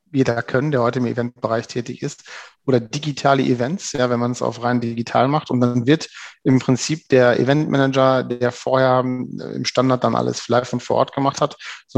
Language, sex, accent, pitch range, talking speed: German, male, German, 120-140 Hz, 190 wpm